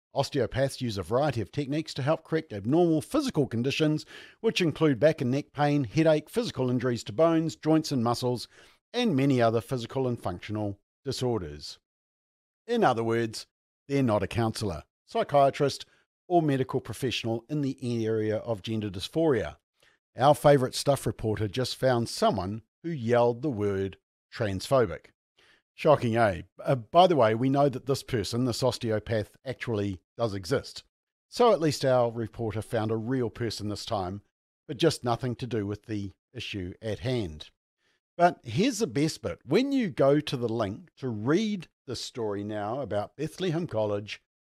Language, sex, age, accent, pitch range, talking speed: English, male, 50-69, Australian, 105-145 Hz, 160 wpm